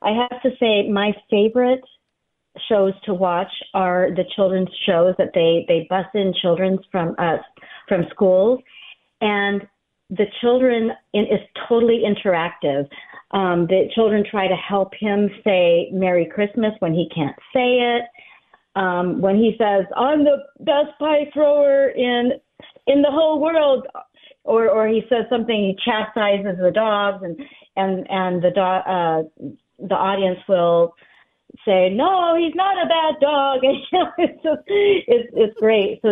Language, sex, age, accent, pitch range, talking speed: English, female, 40-59, American, 185-240 Hz, 150 wpm